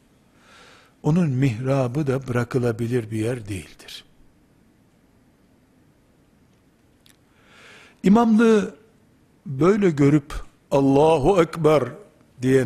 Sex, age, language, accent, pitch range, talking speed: male, 60-79, Turkish, native, 130-170 Hz, 60 wpm